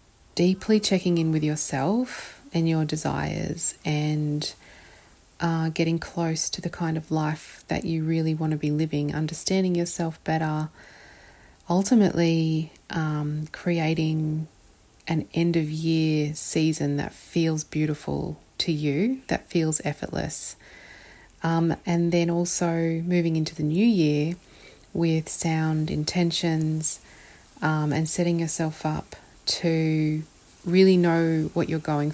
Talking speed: 120 wpm